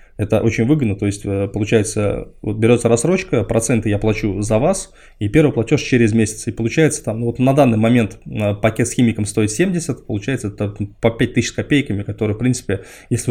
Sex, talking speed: male, 180 wpm